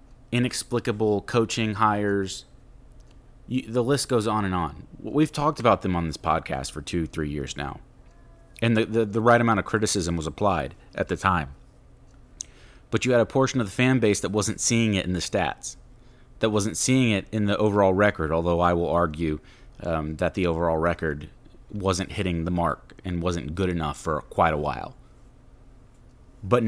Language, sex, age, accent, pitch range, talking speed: English, male, 30-49, American, 90-120 Hz, 180 wpm